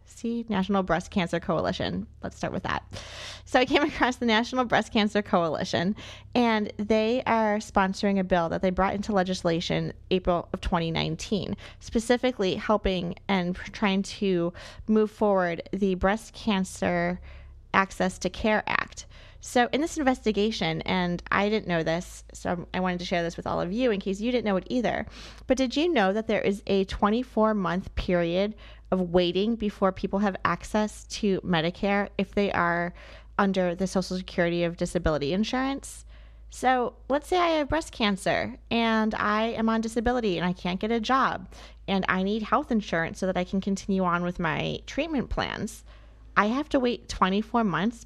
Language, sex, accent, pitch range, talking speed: English, female, American, 180-225 Hz, 175 wpm